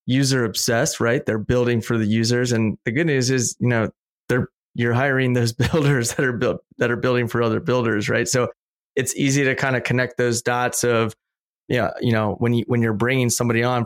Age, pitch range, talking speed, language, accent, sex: 20-39, 115-125 Hz, 215 wpm, English, American, male